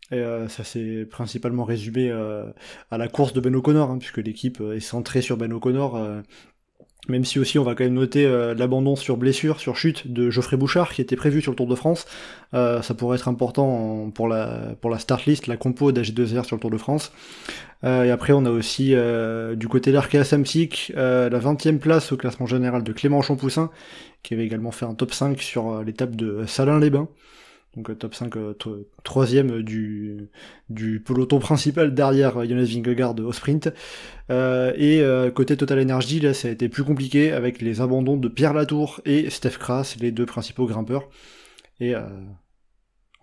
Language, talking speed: French, 195 wpm